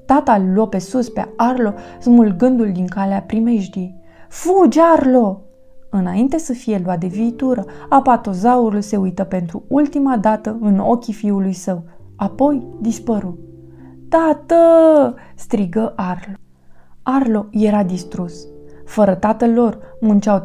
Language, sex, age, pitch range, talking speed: Romanian, female, 20-39, 185-235 Hz, 120 wpm